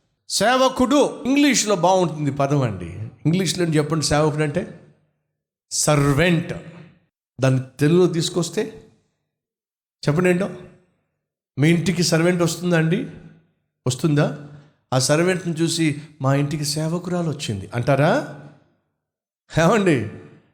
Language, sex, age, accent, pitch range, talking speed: Telugu, male, 50-69, native, 145-185 Hz, 85 wpm